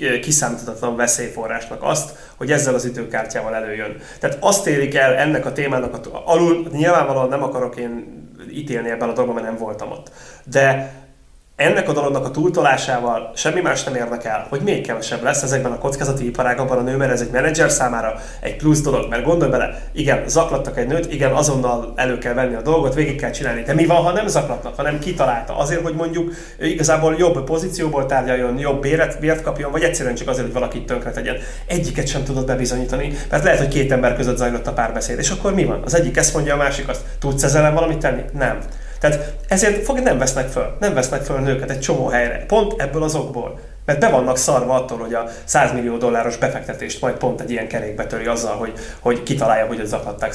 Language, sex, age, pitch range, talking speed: Hungarian, male, 30-49, 120-150 Hz, 195 wpm